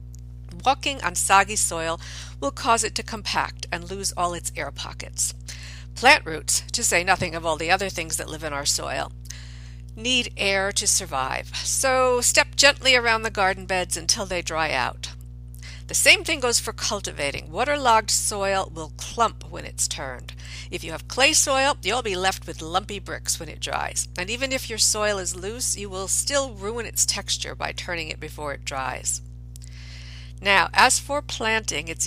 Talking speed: 180 wpm